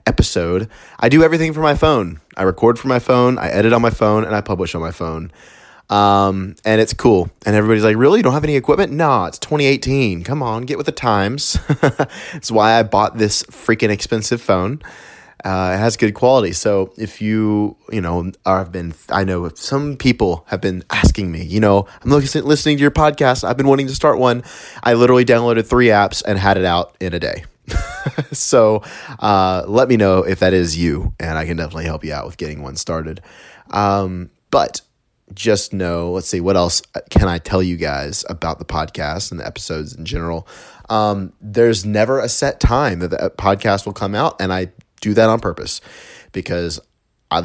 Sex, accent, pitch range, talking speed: male, American, 90-120 Hz, 200 wpm